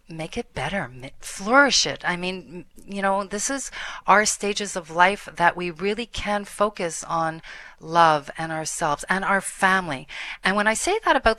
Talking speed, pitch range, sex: 175 wpm, 160-215 Hz, female